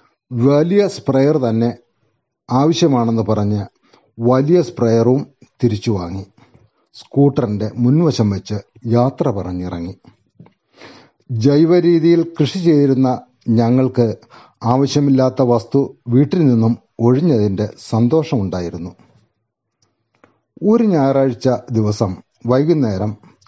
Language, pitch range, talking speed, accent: Malayalam, 115-145 Hz, 70 wpm, native